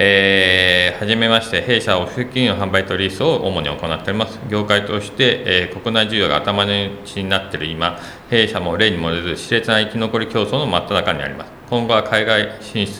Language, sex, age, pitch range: Japanese, male, 40-59, 85-110 Hz